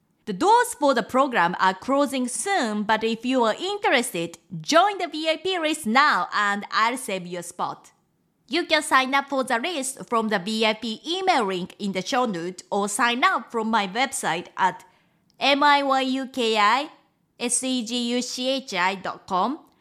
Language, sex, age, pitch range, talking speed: English, female, 20-39, 200-285 Hz, 140 wpm